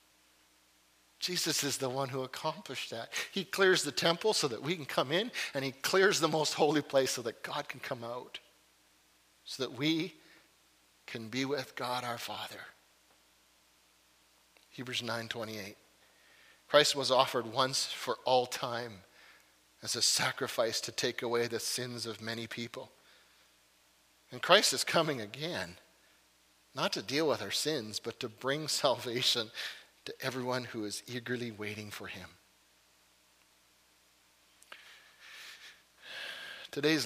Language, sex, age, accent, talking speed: English, male, 40-59, American, 135 wpm